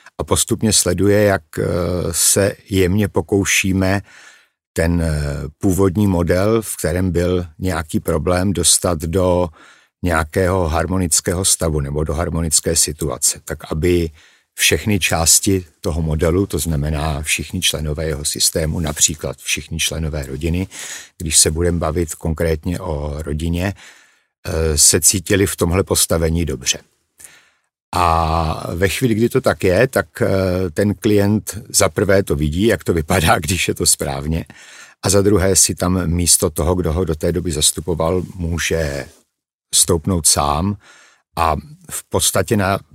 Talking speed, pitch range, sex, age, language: 130 wpm, 80-100 Hz, male, 60-79, Czech